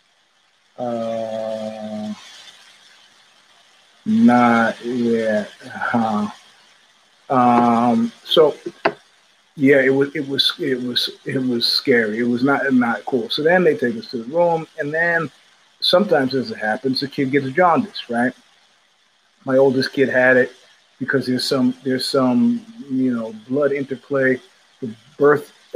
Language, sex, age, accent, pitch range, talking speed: English, male, 30-49, American, 120-155 Hz, 130 wpm